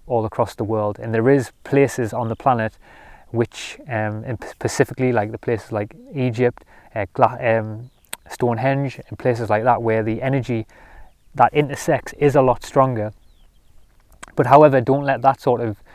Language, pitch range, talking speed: English, 110-125 Hz, 160 wpm